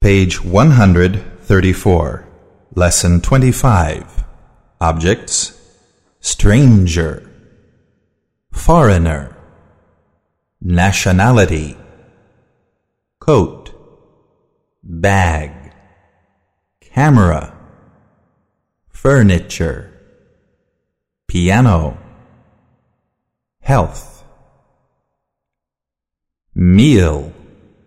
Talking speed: 30 wpm